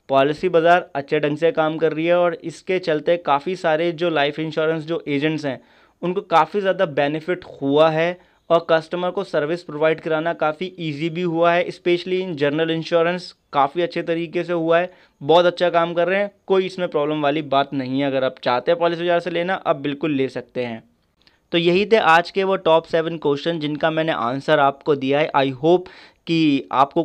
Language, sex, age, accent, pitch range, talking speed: Hindi, male, 30-49, native, 155-175 Hz, 205 wpm